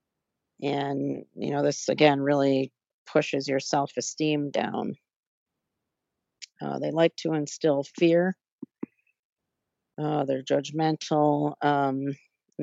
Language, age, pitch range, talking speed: English, 40-59, 145-165 Hz, 100 wpm